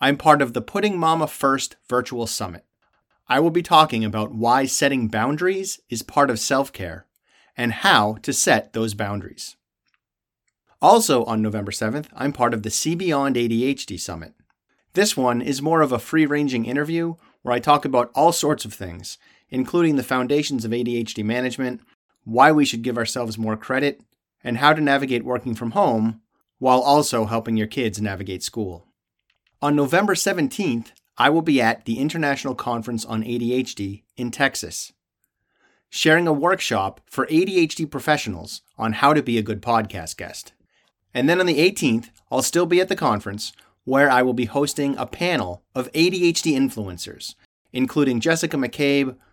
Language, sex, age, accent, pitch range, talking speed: English, male, 30-49, American, 110-150 Hz, 165 wpm